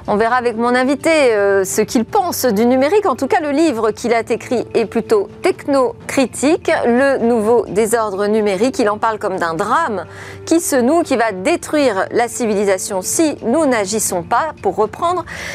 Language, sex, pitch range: French, female, 220-290 Hz